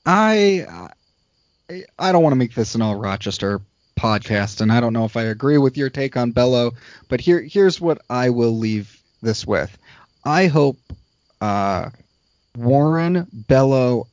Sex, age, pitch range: male, 30-49, 105-135 Hz